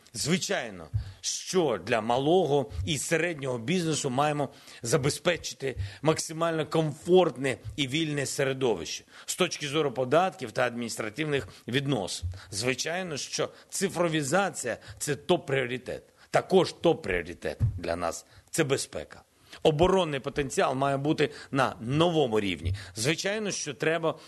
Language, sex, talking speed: Ukrainian, male, 110 wpm